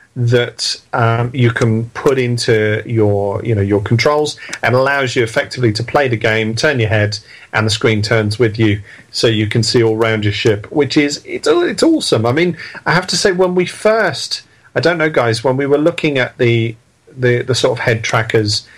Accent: British